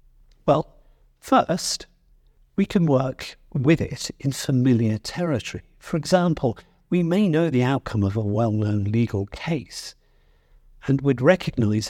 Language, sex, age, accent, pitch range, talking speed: English, male, 50-69, British, 100-145 Hz, 125 wpm